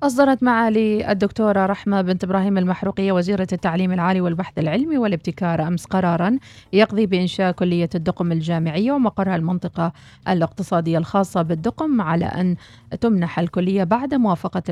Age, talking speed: 40-59, 125 wpm